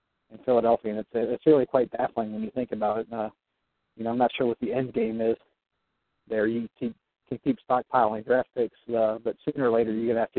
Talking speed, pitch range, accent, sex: 235 wpm, 110-125 Hz, American, male